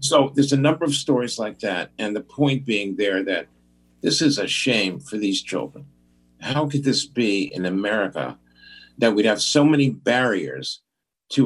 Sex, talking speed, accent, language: male, 180 wpm, American, English